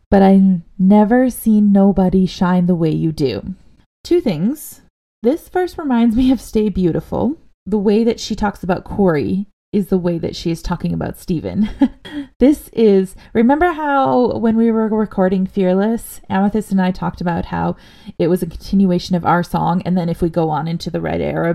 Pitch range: 180-230 Hz